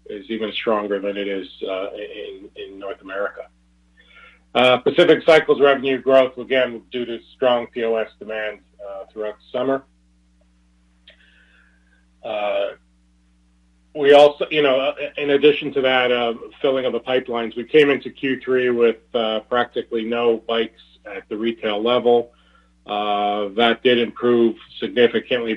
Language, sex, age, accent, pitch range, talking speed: English, male, 40-59, American, 105-130 Hz, 135 wpm